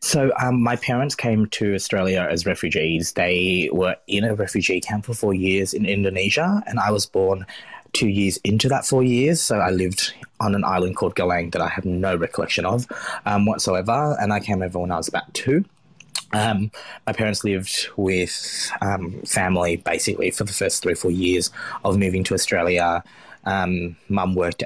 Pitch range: 90-110 Hz